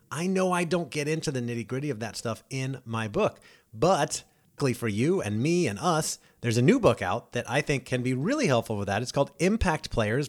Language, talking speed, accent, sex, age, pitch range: English, 225 wpm, American, male, 30-49, 115-145 Hz